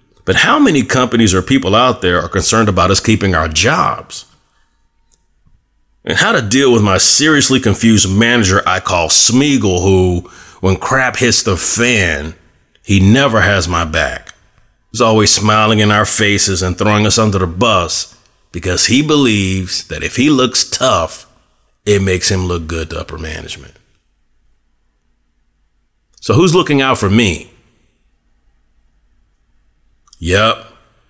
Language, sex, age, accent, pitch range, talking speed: English, male, 30-49, American, 80-110 Hz, 140 wpm